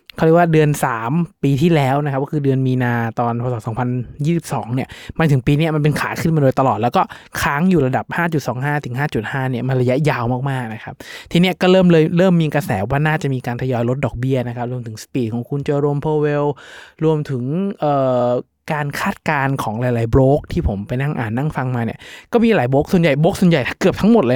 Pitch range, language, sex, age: 125-155 Hz, Thai, male, 20-39